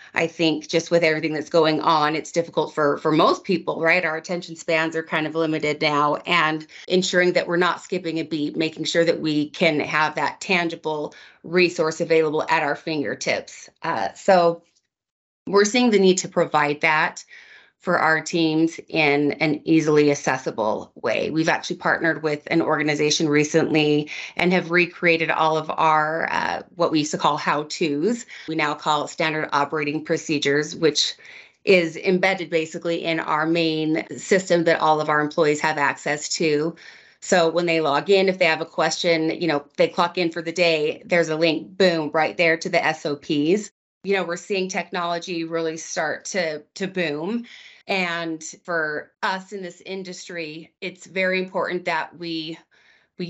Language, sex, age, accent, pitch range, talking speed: English, female, 30-49, American, 155-180 Hz, 170 wpm